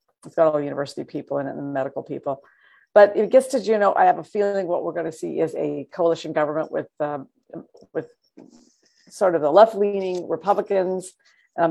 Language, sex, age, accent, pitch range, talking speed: English, female, 50-69, American, 150-190 Hz, 200 wpm